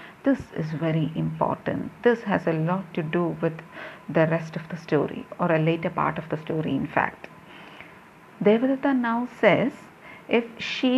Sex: female